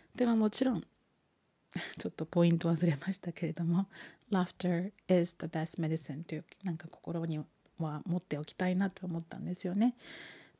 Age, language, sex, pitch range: 30-49, Japanese, female, 165-185 Hz